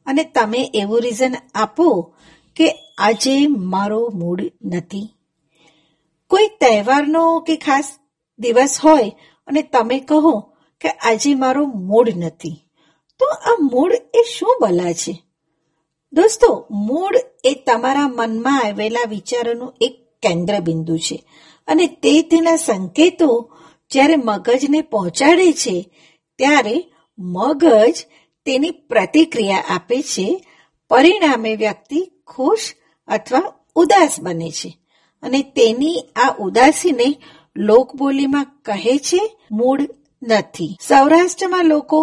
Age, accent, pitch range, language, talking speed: 50-69, native, 195-315 Hz, Gujarati, 85 wpm